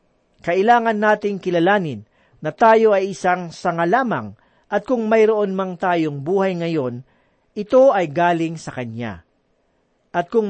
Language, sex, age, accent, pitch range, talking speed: Filipino, male, 40-59, native, 150-205 Hz, 125 wpm